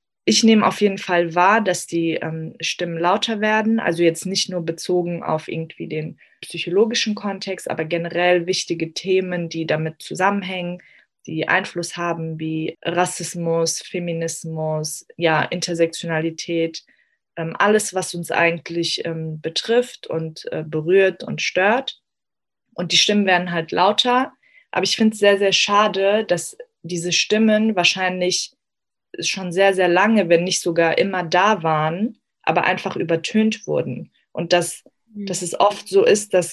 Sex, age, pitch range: female, 20-39, 165-195 Hz